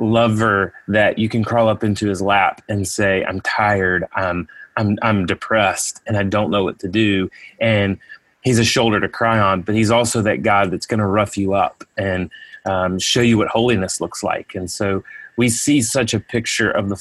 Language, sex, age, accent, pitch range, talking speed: English, male, 30-49, American, 100-120 Hz, 210 wpm